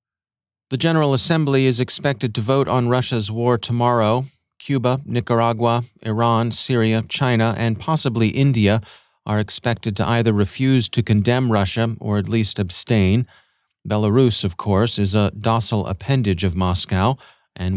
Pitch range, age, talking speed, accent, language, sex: 105-125 Hz, 40-59, 140 wpm, American, English, male